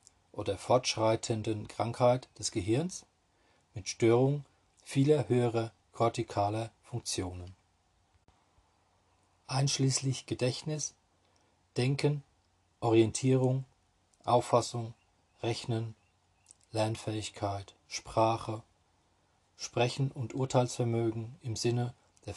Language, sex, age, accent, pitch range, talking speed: German, male, 40-59, German, 95-125 Hz, 65 wpm